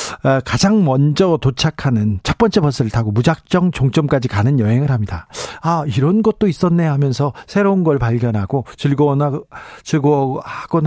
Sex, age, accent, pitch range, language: male, 40-59, native, 140-185 Hz, Korean